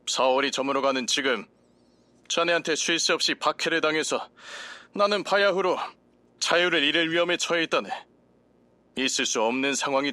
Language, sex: Korean, male